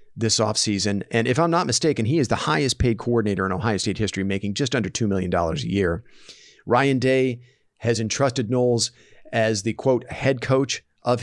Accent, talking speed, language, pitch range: American, 185 wpm, English, 100-135 Hz